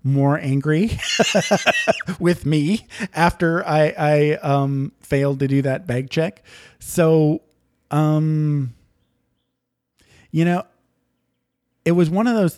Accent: American